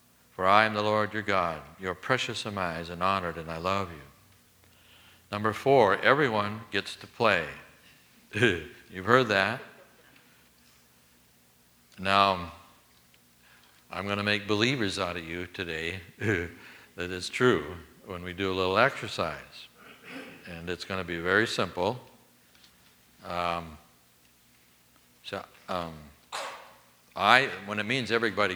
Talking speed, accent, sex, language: 125 wpm, American, male, English